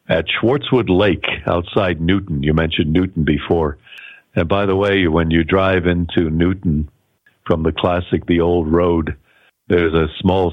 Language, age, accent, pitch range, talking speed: English, 60-79, American, 80-95 Hz, 155 wpm